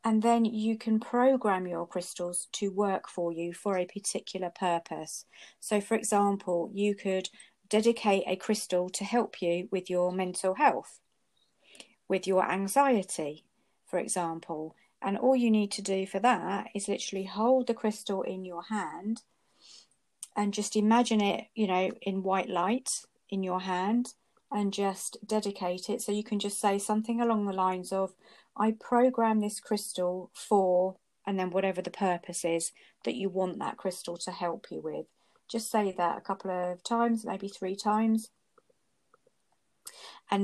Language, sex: English, female